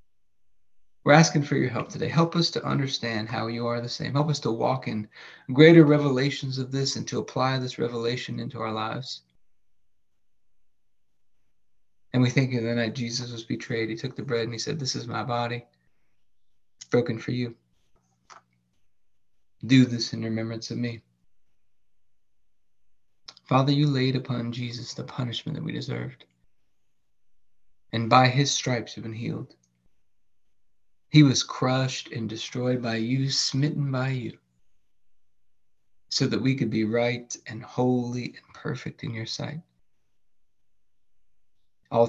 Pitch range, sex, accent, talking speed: 110-135 Hz, male, American, 145 wpm